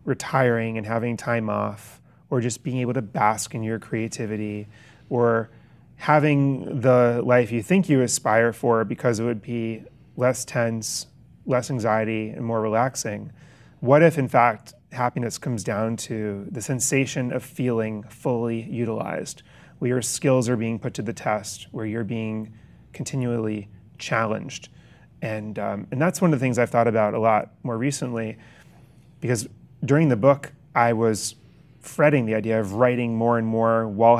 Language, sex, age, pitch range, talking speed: English, male, 30-49, 110-130 Hz, 160 wpm